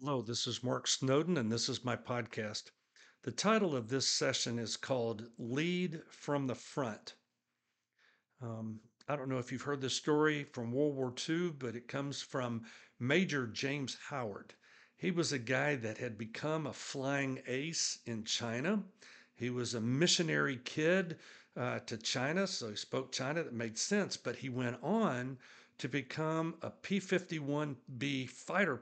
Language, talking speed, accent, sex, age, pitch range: English, 160 wpm, American, male, 60-79, 120-160 Hz